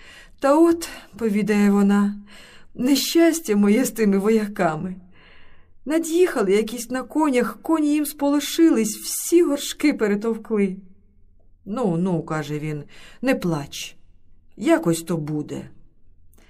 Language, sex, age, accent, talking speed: Ukrainian, female, 50-69, native, 100 wpm